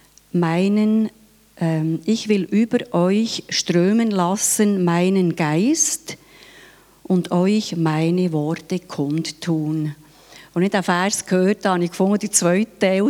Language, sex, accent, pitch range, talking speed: German, female, Swiss, 175-210 Hz, 125 wpm